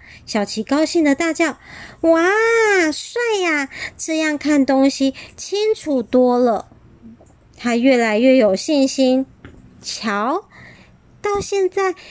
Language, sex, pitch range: Chinese, male, 225-335 Hz